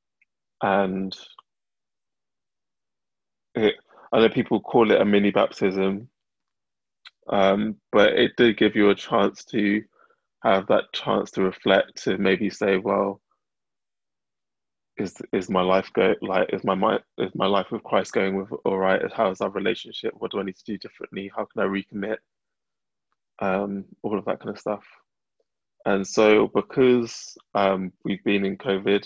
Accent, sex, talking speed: British, male, 155 wpm